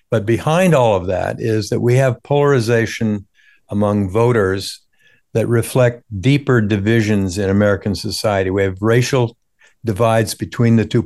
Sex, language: male, English